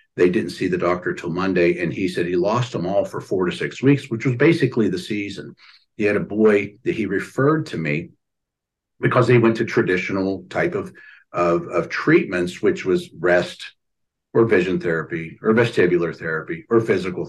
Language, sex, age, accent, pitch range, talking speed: English, male, 50-69, American, 90-120 Hz, 185 wpm